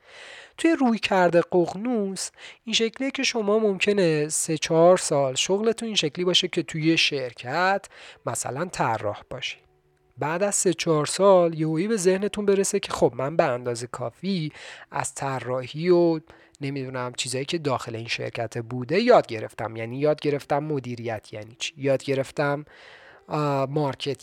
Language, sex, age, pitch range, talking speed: Persian, male, 40-59, 130-195 Hz, 140 wpm